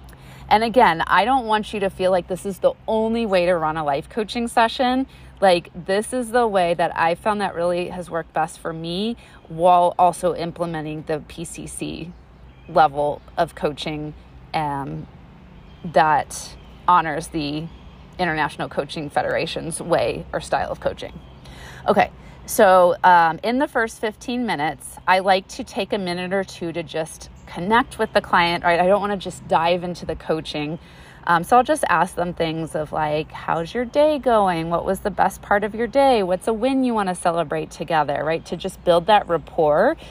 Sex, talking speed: female, 185 wpm